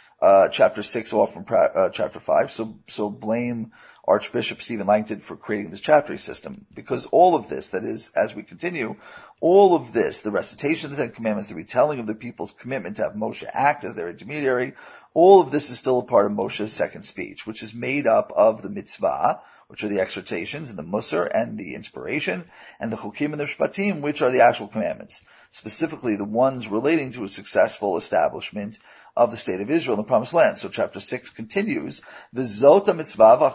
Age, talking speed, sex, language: 40-59, 195 wpm, male, English